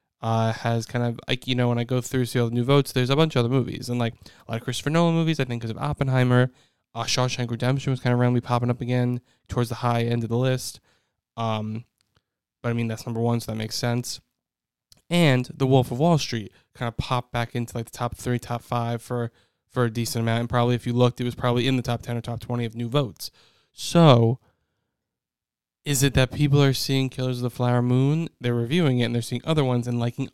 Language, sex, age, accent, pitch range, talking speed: English, male, 10-29, American, 115-130 Hz, 245 wpm